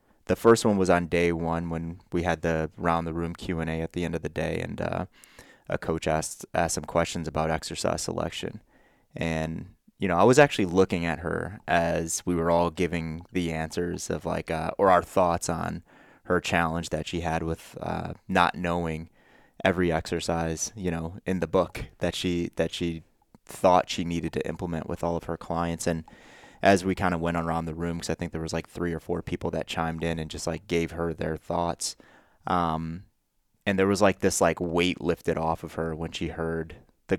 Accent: American